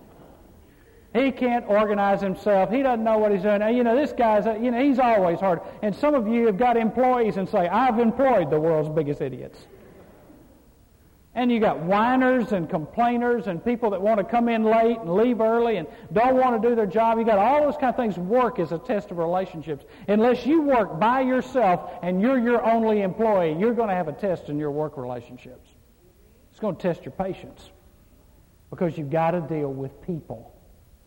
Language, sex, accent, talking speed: English, male, American, 205 wpm